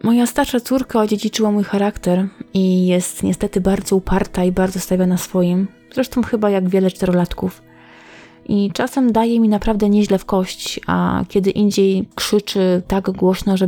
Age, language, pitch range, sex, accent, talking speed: 20-39, Polish, 180-205 Hz, female, native, 160 wpm